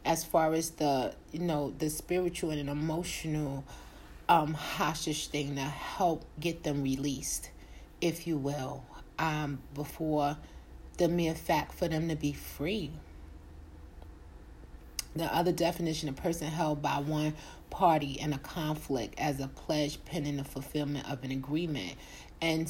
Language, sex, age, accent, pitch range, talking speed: English, female, 30-49, American, 145-165 Hz, 135 wpm